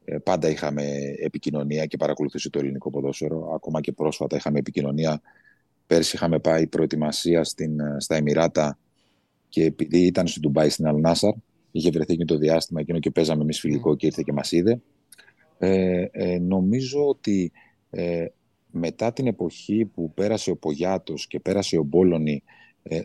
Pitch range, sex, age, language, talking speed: 80-105 Hz, male, 30-49, Greek, 155 wpm